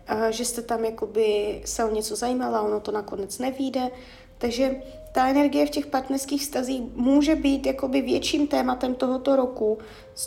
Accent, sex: native, female